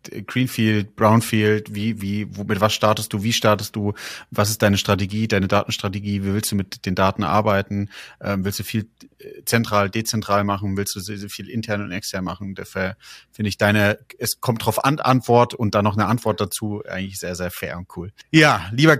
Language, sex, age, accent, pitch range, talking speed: German, male, 30-49, German, 100-120 Hz, 200 wpm